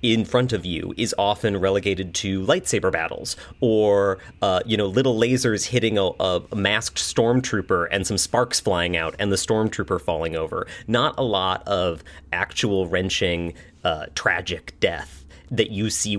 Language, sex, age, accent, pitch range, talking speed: English, male, 30-49, American, 90-110 Hz, 160 wpm